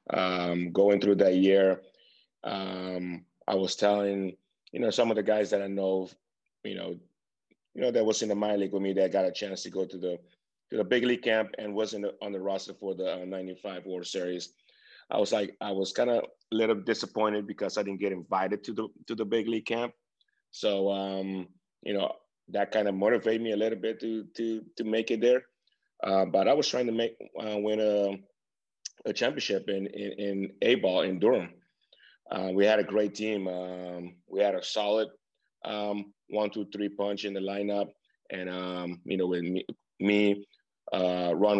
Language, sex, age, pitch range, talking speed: English, male, 30-49, 90-105 Hz, 205 wpm